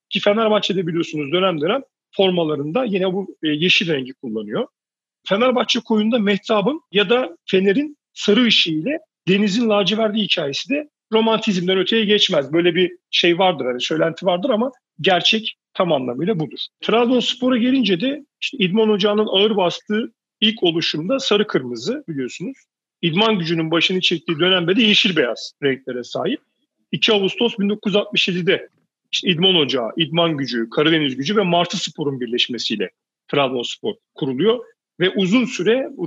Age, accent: 40-59, native